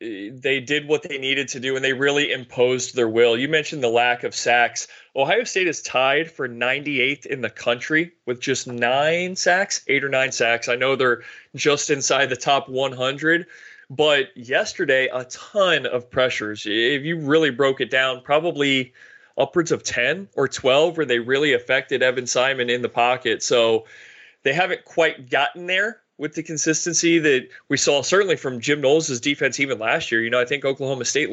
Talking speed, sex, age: 185 wpm, male, 20-39